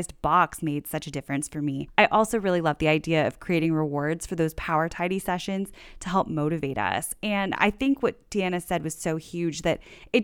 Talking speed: 210 wpm